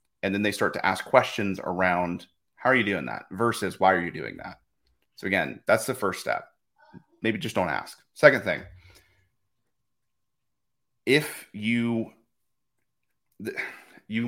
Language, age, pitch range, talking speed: English, 30-49, 100-120 Hz, 145 wpm